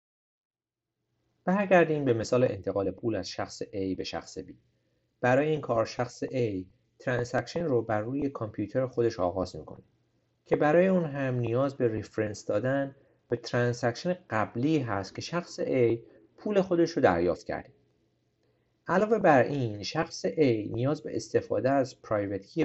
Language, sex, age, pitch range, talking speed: Persian, male, 50-69, 110-155 Hz, 145 wpm